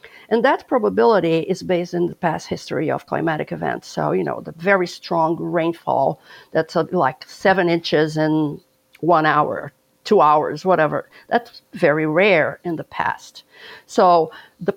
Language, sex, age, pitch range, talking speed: English, female, 50-69, 170-220 Hz, 150 wpm